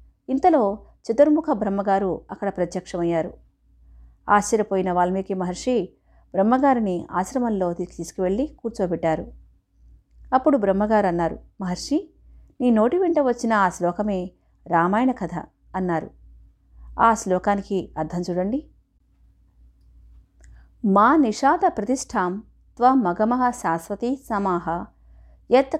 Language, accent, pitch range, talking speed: Telugu, native, 175-245 Hz, 85 wpm